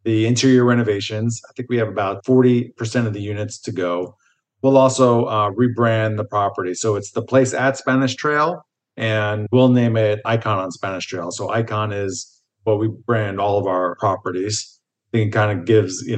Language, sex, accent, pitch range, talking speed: English, male, American, 105-130 Hz, 195 wpm